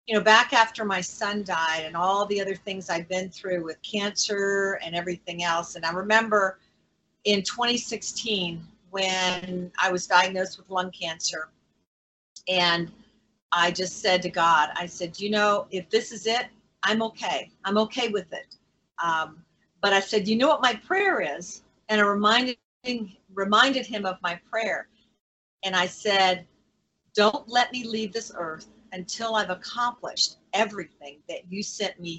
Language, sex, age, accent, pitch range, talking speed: English, female, 50-69, American, 180-220 Hz, 160 wpm